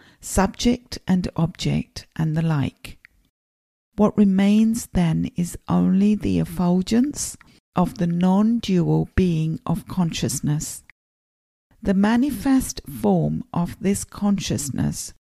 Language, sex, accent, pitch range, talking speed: English, female, British, 130-195 Hz, 100 wpm